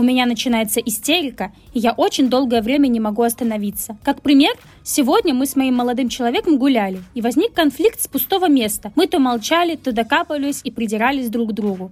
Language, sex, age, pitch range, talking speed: Russian, female, 20-39, 240-300 Hz, 185 wpm